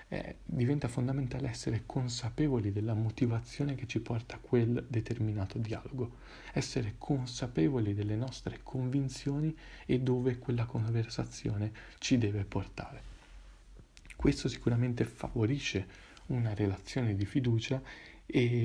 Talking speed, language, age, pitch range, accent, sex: 110 wpm, Italian, 40-59, 105-130 Hz, native, male